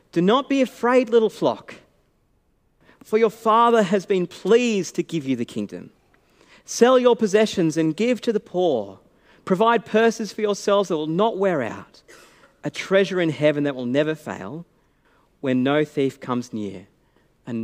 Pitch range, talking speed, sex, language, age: 165-235 Hz, 165 wpm, male, English, 40-59